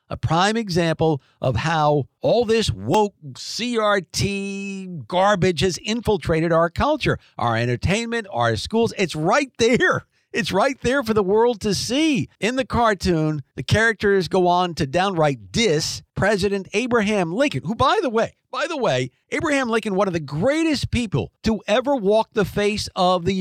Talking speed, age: 160 wpm, 50-69